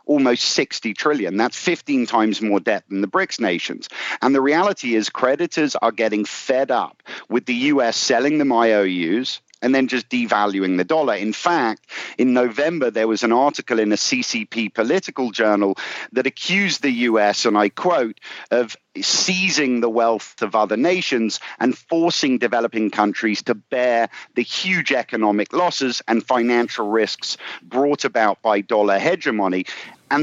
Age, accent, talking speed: 50-69, British, 155 wpm